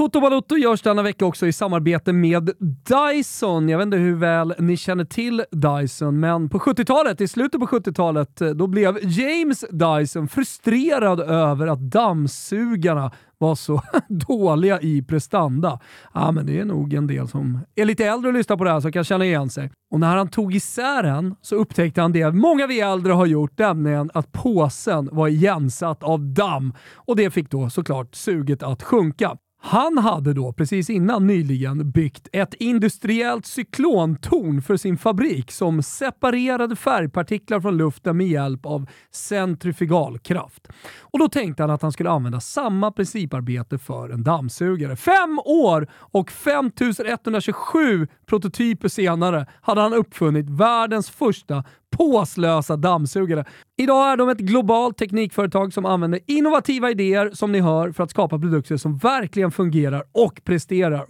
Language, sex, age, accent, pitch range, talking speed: Swedish, male, 30-49, native, 155-220 Hz, 160 wpm